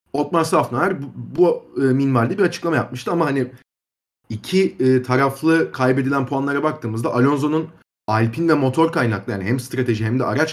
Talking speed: 160 wpm